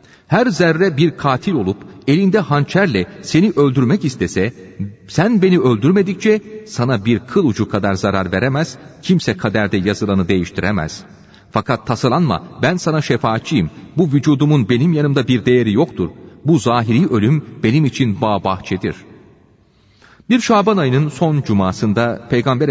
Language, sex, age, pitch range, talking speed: Turkish, male, 40-59, 100-145 Hz, 130 wpm